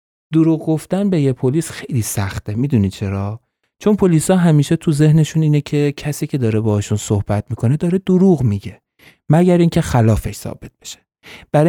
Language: Persian